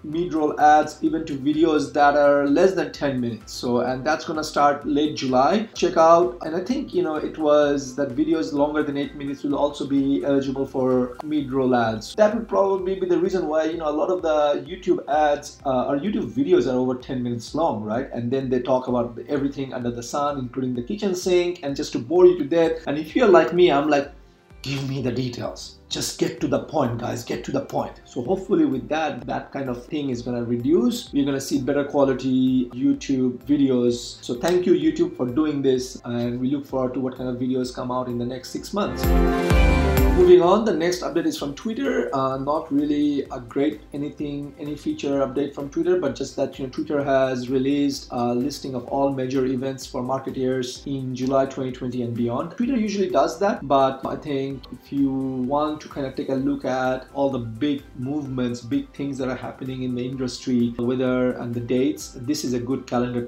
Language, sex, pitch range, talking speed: English, male, 125-150 Hz, 220 wpm